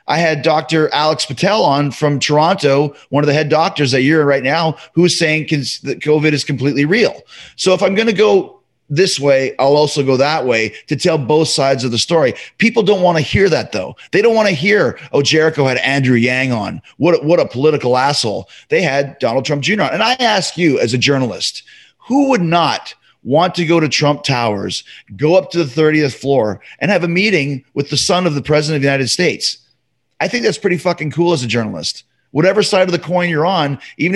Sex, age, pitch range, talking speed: male, 30-49, 140-180 Hz, 225 wpm